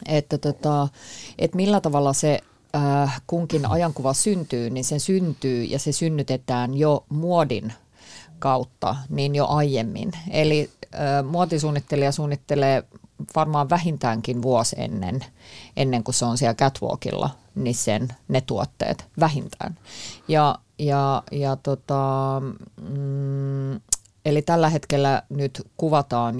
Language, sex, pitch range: Finnish, female, 125-150 Hz